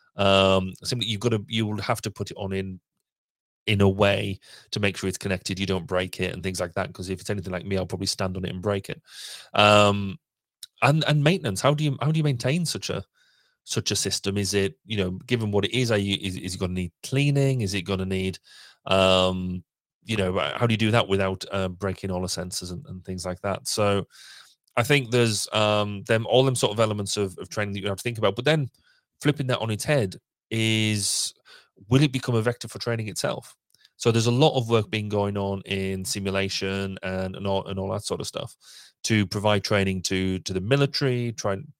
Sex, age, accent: male, 30-49, British